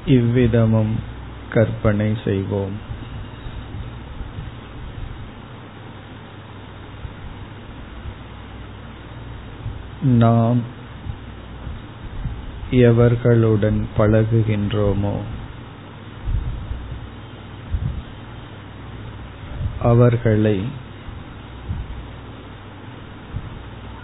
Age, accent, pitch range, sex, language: 50-69, native, 105-115 Hz, male, Tamil